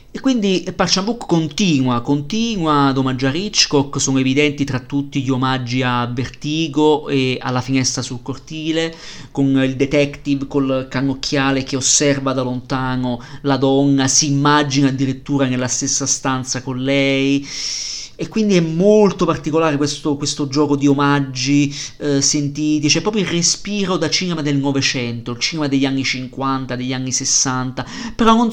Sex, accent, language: male, native, Italian